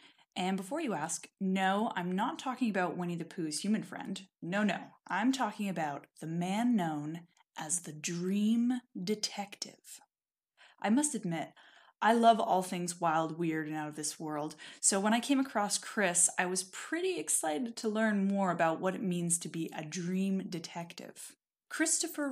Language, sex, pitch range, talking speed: English, female, 175-225 Hz, 170 wpm